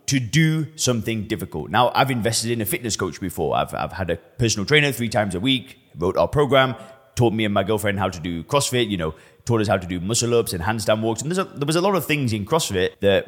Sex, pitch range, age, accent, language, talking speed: male, 105-150 Hz, 20-39, British, English, 260 wpm